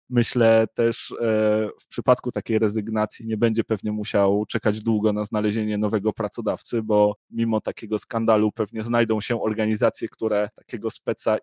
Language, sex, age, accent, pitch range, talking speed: Polish, male, 20-39, native, 110-120 Hz, 140 wpm